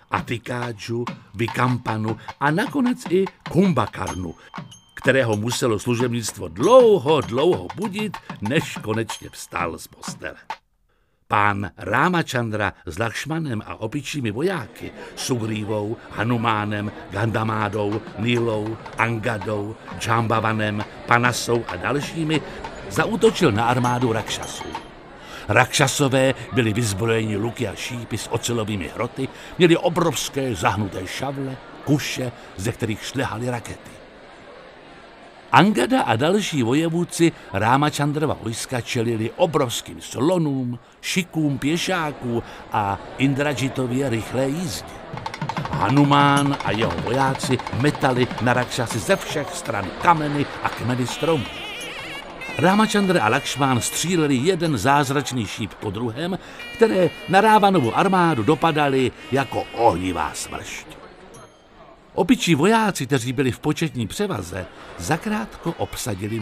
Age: 60-79